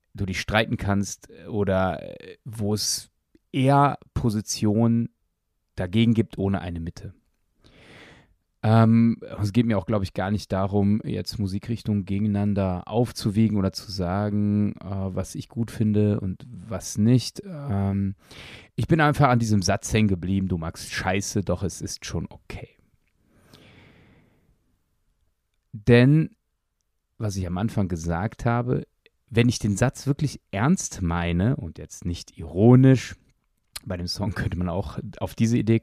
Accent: German